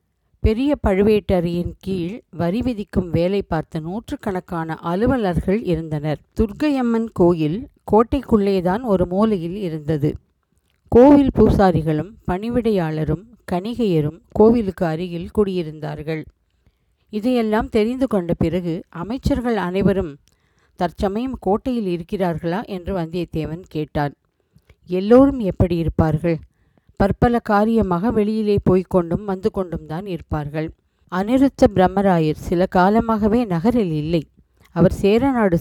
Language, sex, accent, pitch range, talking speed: Tamil, female, native, 170-220 Hz, 90 wpm